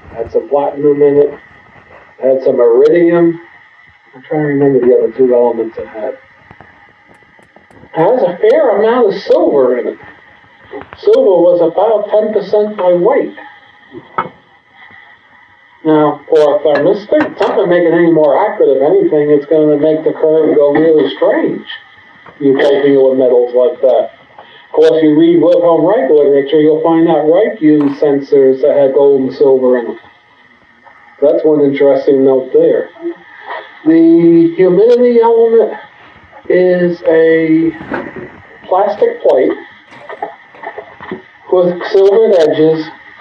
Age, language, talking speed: 50-69, English, 140 wpm